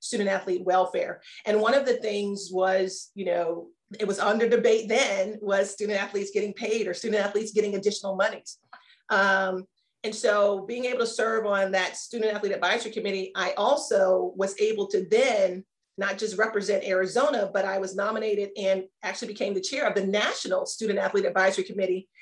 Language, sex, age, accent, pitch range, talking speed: English, female, 40-59, American, 195-230 Hz, 180 wpm